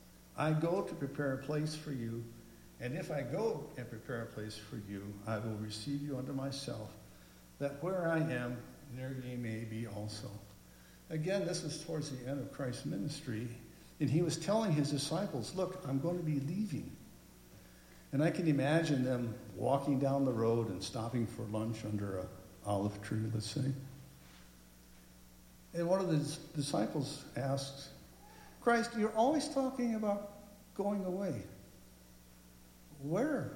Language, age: English, 60-79